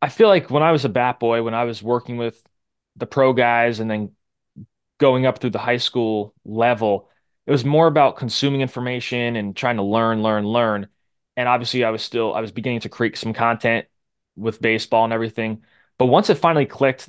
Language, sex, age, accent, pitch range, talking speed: English, male, 20-39, American, 110-130 Hz, 205 wpm